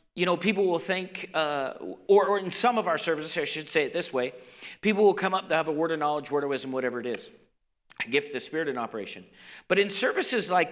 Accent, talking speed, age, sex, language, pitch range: American, 260 wpm, 40-59, male, English, 135-195 Hz